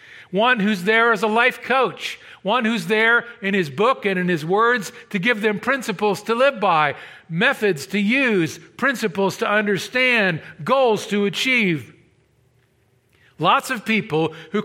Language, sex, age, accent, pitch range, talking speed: English, male, 50-69, American, 160-215 Hz, 150 wpm